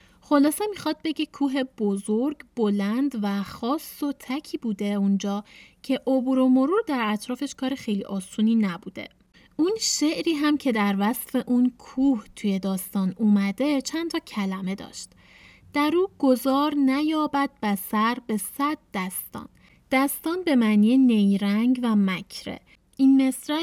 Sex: female